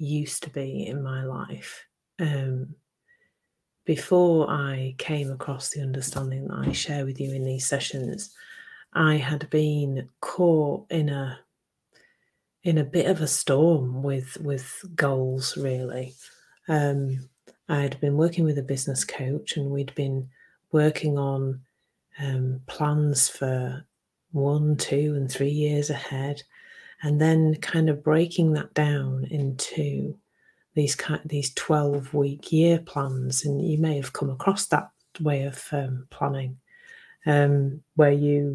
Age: 30-49